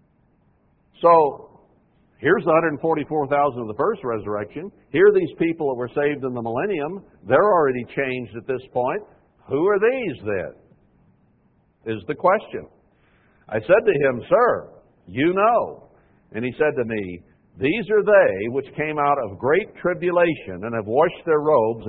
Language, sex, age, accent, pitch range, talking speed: English, male, 60-79, American, 130-185 Hz, 155 wpm